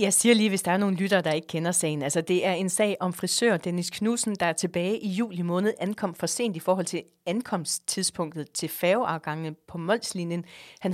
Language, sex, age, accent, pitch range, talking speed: Danish, female, 30-49, native, 170-205 Hz, 215 wpm